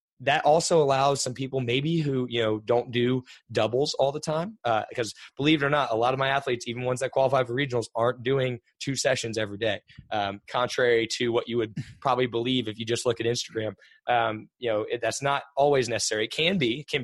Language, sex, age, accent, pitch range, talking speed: English, male, 20-39, American, 115-140 Hz, 225 wpm